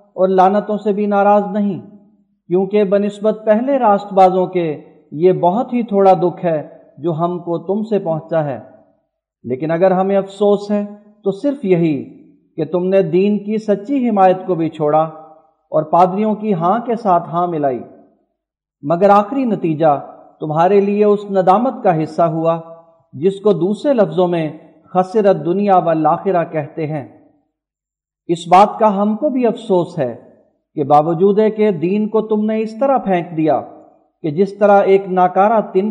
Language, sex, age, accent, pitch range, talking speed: English, male, 50-69, Indian, 165-205 Hz, 150 wpm